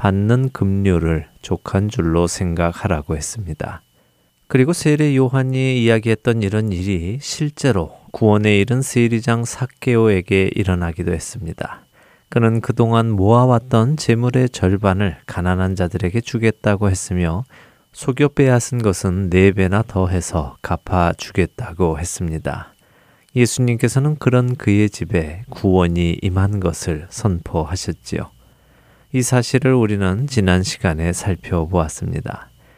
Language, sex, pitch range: Korean, male, 90-120 Hz